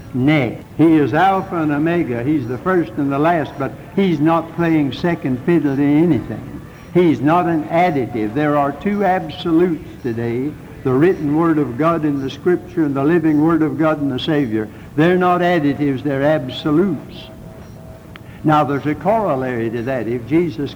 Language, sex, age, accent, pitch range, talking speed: English, male, 60-79, American, 135-175 Hz, 170 wpm